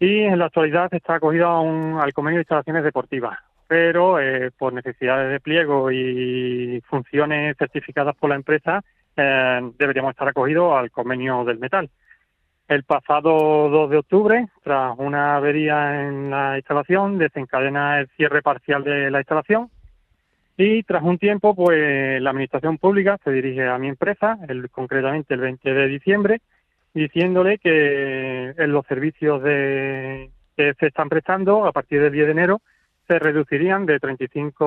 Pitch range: 135-160 Hz